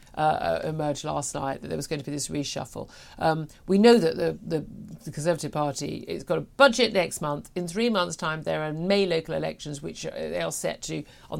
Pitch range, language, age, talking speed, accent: 155-195 Hz, English, 50-69, 215 wpm, British